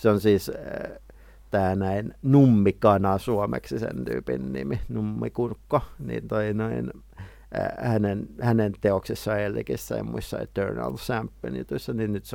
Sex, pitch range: male, 100-115 Hz